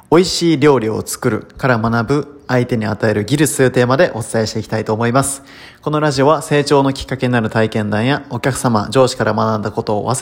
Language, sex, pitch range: Japanese, male, 110-135 Hz